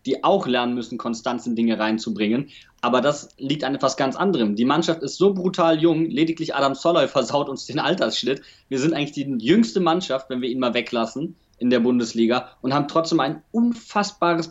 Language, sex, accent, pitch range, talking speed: German, male, German, 125-170 Hz, 195 wpm